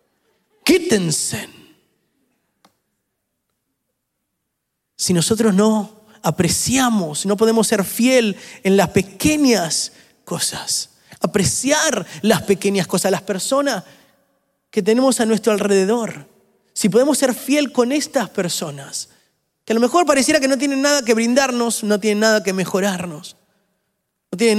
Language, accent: Spanish, Argentinian